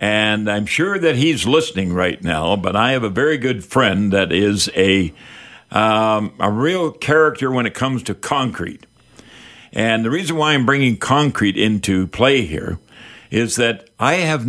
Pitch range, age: 105-135 Hz, 60-79